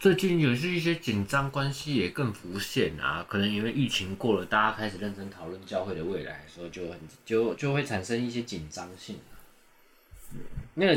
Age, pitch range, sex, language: 20-39, 90-130 Hz, male, Chinese